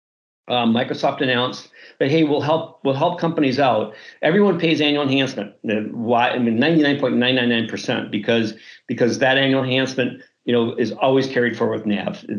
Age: 50-69